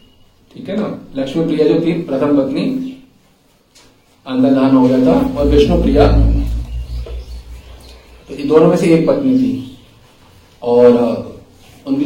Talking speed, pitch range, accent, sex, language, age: 115 wpm, 115-165 Hz, native, male, Hindi, 40-59